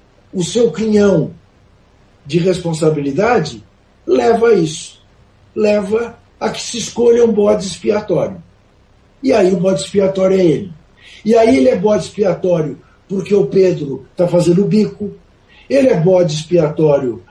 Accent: Brazilian